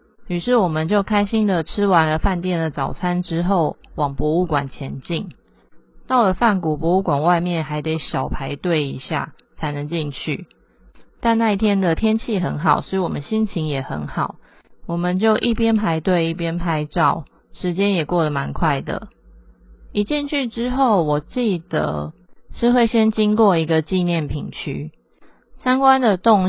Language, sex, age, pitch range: Chinese, female, 30-49, 155-210 Hz